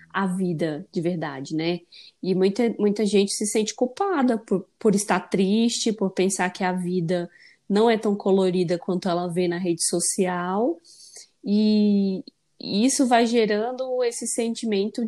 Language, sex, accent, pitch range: Portuguese, female, Brazilian, 180-225 Hz